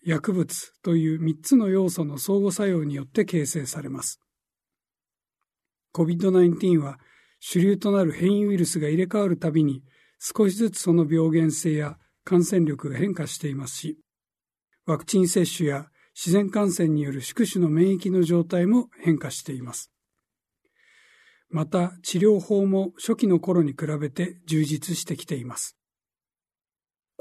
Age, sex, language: 60-79, male, Japanese